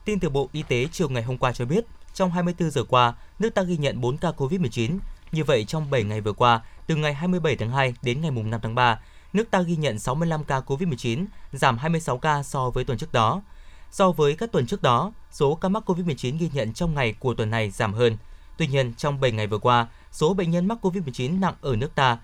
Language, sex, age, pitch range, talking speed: Vietnamese, male, 20-39, 125-170 Hz, 240 wpm